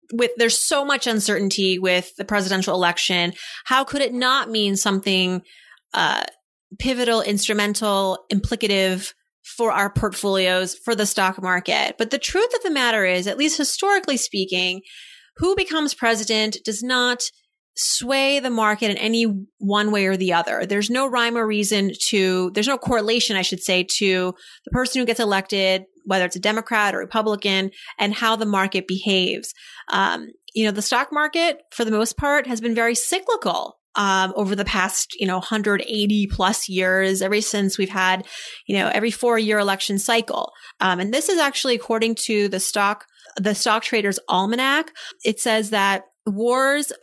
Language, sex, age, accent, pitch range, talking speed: English, female, 30-49, American, 195-240 Hz, 170 wpm